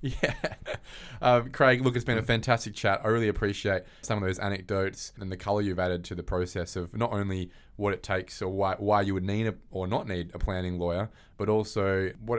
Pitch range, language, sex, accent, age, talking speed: 90-105 Hz, English, male, Australian, 20-39, 225 wpm